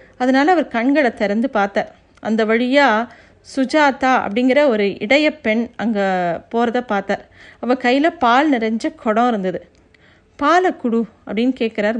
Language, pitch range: Tamil, 215-270 Hz